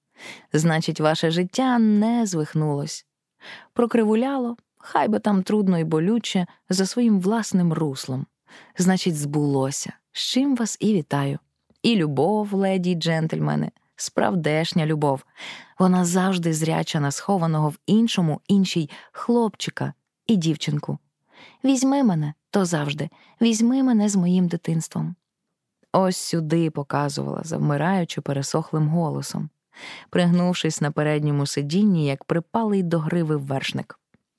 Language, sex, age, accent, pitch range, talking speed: Ukrainian, female, 20-39, native, 155-200 Hz, 110 wpm